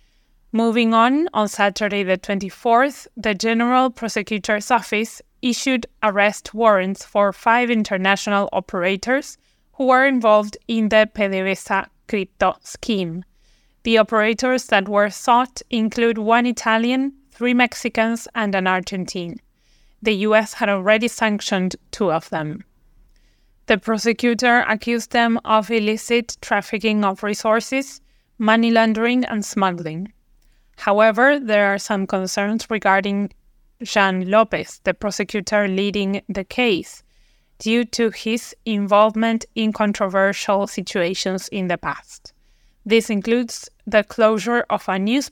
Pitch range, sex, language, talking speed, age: 200-235 Hz, female, English, 120 wpm, 20-39